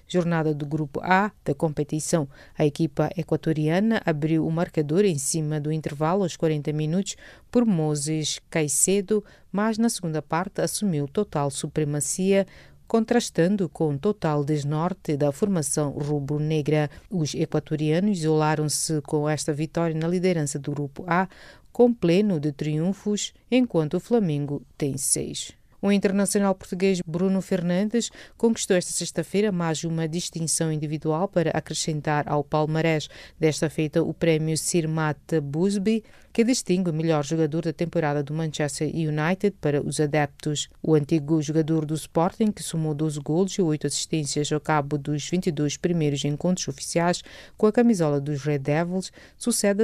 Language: English